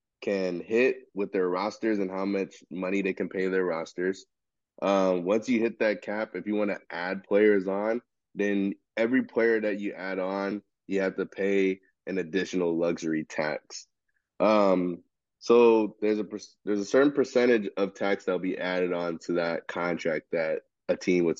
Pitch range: 90-115 Hz